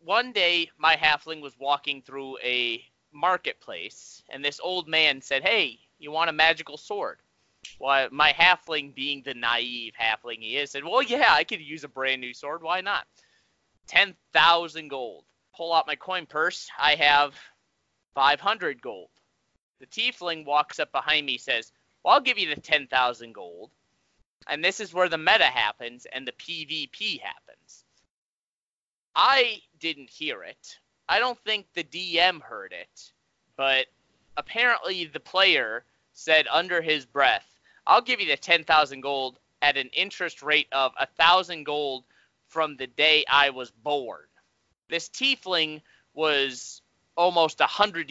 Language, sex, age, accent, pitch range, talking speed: English, male, 20-39, American, 140-175 Hz, 150 wpm